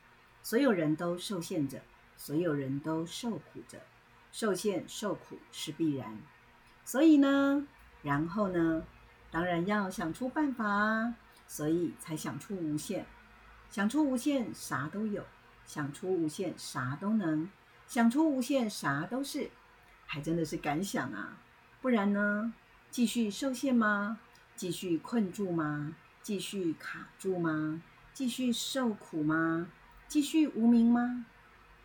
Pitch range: 160-235 Hz